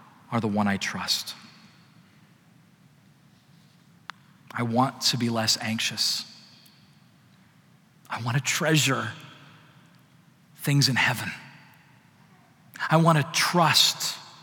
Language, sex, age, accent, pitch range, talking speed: English, male, 40-59, American, 120-155 Hz, 85 wpm